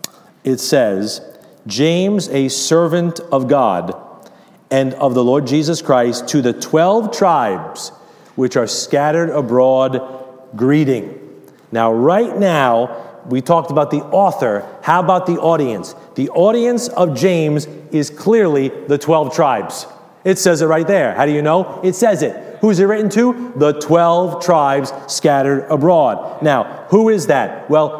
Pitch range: 140-215 Hz